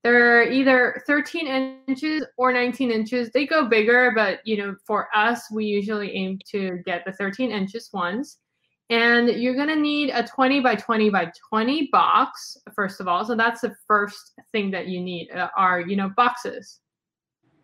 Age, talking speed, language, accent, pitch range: 20-39, 170 wpm, English, American, 205-260 Hz